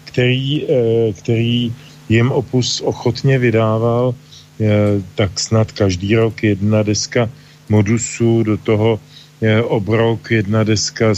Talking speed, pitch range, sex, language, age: 105 wpm, 105-120 Hz, male, English, 40-59